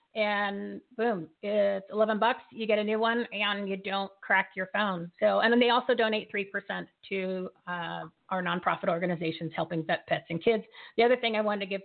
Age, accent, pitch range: 40-59, American, 195-230 Hz